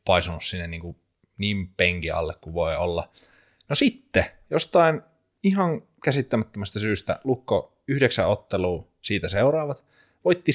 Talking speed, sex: 120 wpm, male